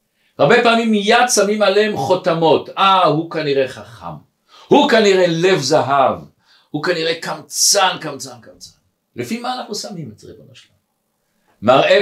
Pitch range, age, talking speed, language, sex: 155-205 Hz, 60-79, 135 wpm, Hebrew, male